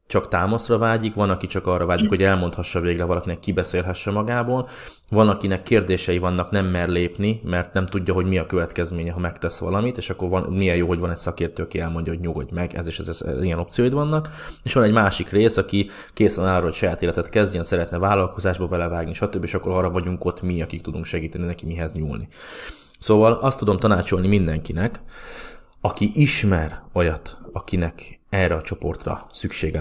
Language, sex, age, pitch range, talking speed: Hungarian, male, 20-39, 85-100 Hz, 185 wpm